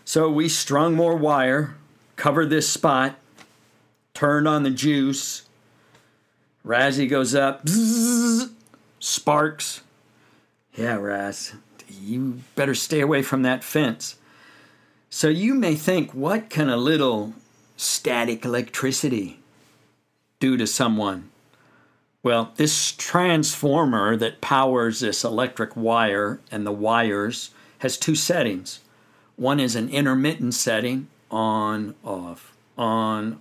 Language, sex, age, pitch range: English, male, 50-69, 115-145 Hz